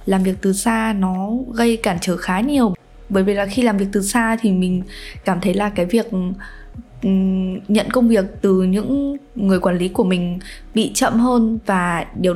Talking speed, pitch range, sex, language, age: 195 wpm, 185-235 Hz, female, Vietnamese, 10-29